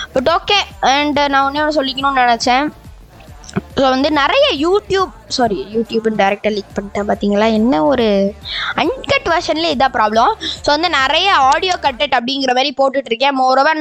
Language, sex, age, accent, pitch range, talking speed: Tamil, female, 20-39, native, 235-285 Hz, 130 wpm